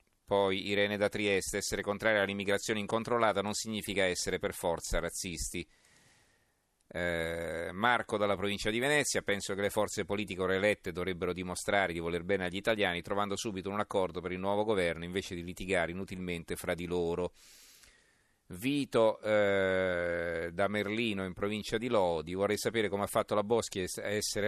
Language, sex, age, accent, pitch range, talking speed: Italian, male, 40-59, native, 85-105 Hz, 160 wpm